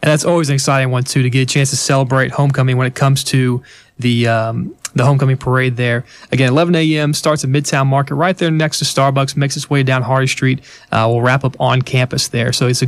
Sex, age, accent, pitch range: male, 20-39, American, 125-140 Hz